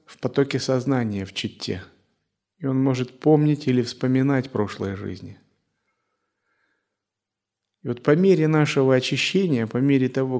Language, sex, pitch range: Russian, male, 110-140 Hz